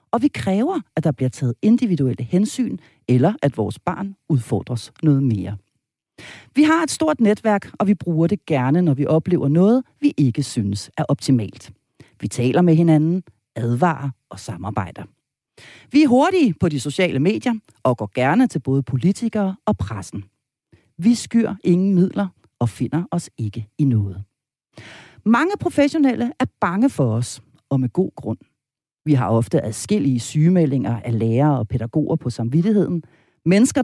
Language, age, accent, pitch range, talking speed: Danish, 40-59, native, 130-220 Hz, 160 wpm